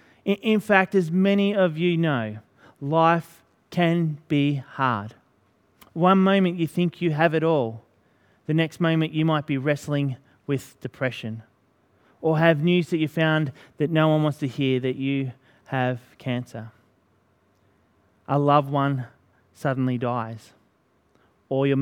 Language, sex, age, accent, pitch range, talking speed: English, male, 30-49, Australian, 125-165 Hz, 140 wpm